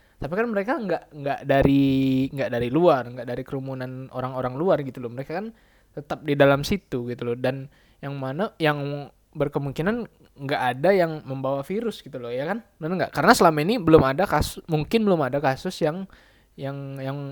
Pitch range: 130-160 Hz